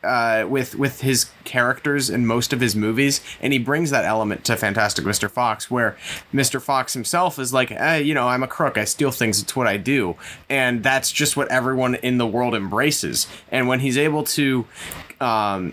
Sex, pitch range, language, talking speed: male, 110-135 Hz, English, 200 wpm